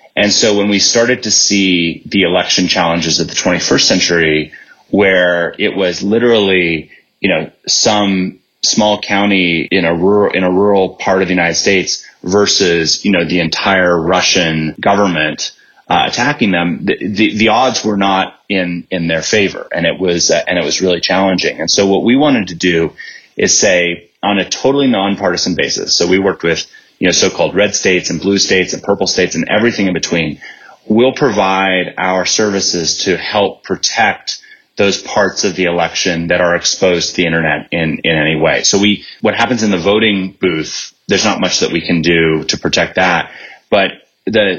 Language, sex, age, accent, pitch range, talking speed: English, male, 30-49, American, 85-100 Hz, 185 wpm